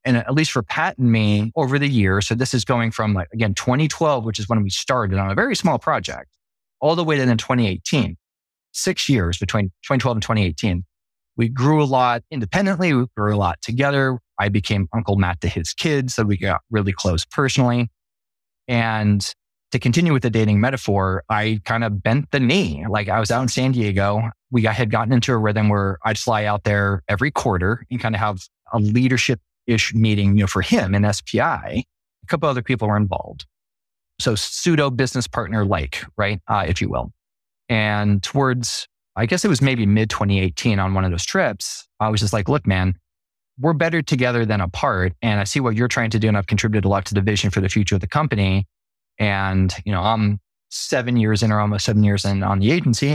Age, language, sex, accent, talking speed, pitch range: 20-39, English, male, American, 215 wpm, 100-125 Hz